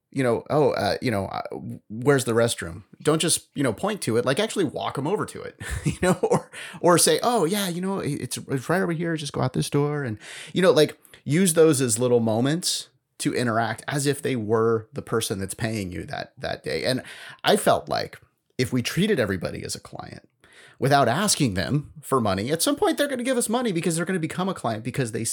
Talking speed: 235 wpm